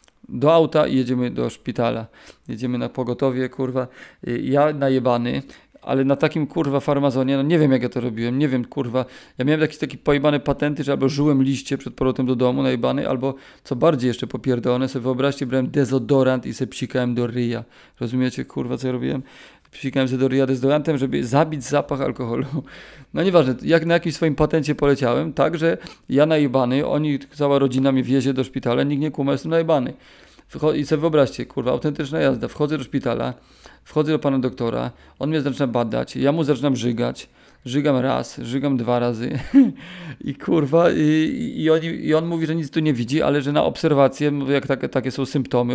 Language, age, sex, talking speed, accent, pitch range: Polish, 40-59, male, 185 wpm, native, 125-145 Hz